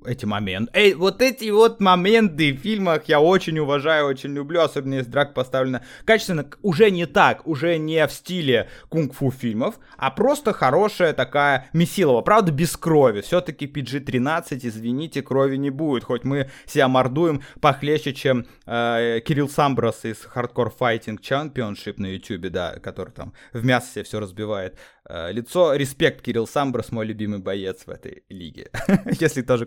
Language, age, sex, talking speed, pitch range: Russian, 20-39, male, 155 wpm, 120-165 Hz